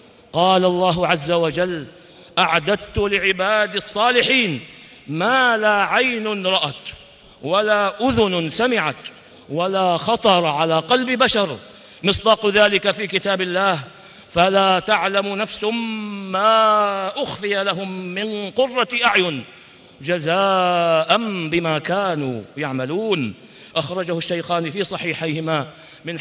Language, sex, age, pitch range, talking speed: Arabic, male, 50-69, 175-225 Hz, 95 wpm